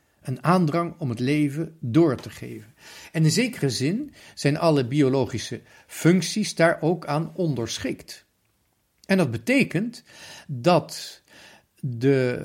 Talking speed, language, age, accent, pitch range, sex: 120 wpm, Dutch, 50-69, Dutch, 130-175 Hz, male